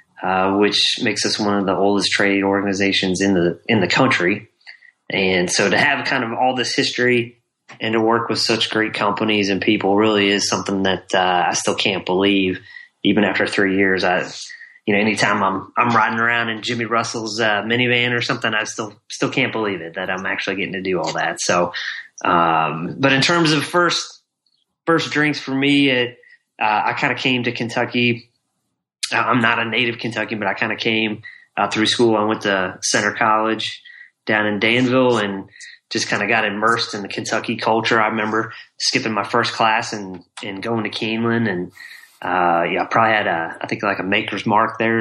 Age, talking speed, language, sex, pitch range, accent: 30-49, 200 wpm, English, male, 100-120 Hz, American